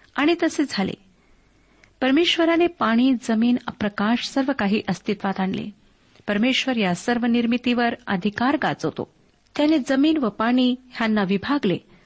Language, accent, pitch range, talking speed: Marathi, native, 205-260 Hz, 110 wpm